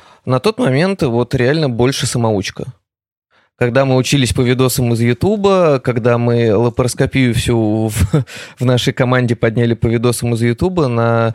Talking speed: 145 wpm